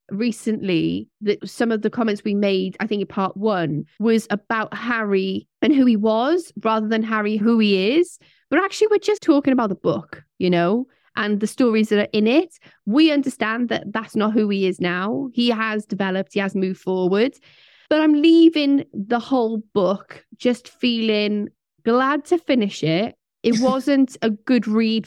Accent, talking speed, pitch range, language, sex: British, 180 wpm, 205-275 Hz, English, female